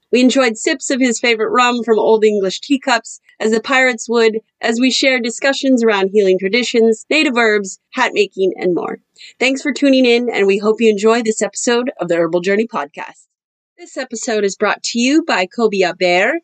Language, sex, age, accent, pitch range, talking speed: English, female, 30-49, American, 205-255 Hz, 195 wpm